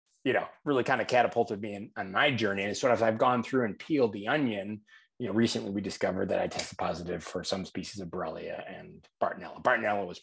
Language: English